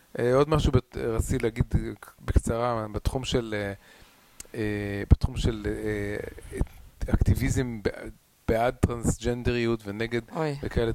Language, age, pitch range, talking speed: Hebrew, 30-49, 105-120 Hz, 65 wpm